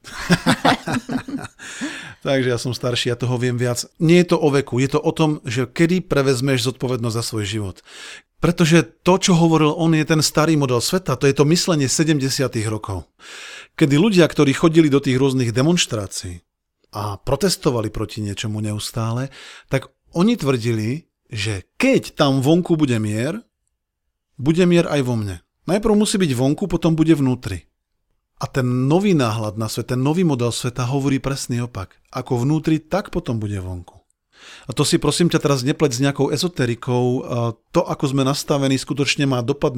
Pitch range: 115-160 Hz